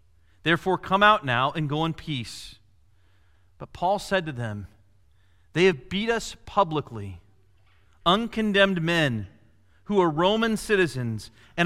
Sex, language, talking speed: male, English, 130 wpm